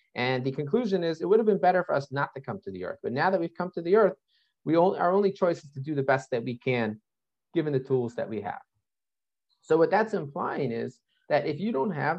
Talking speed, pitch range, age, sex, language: 265 wpm, 120-180 Hz, 30-49, male, English